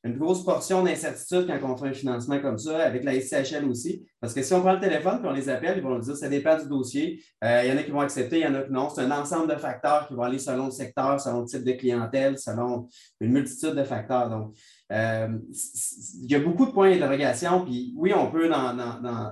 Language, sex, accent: French, male, Canadian